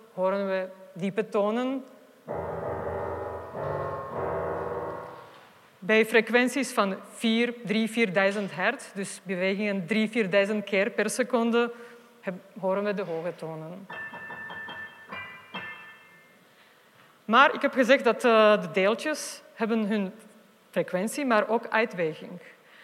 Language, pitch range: Dutch, 200-260 Hz